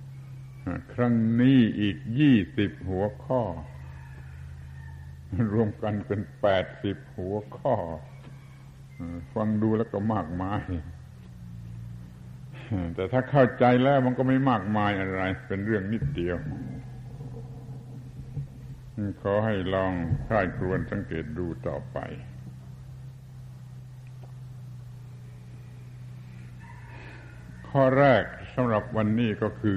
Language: Thai